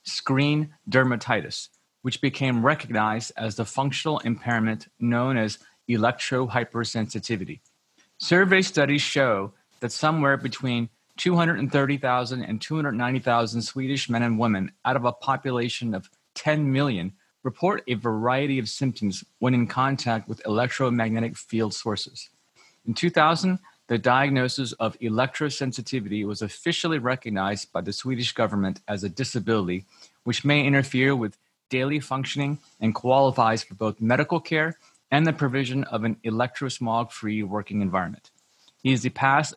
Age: 30-49